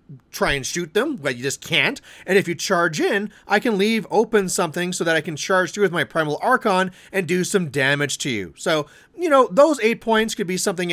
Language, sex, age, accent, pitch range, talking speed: English, male, 30-49, American, 160-210 Hz, 235 wpm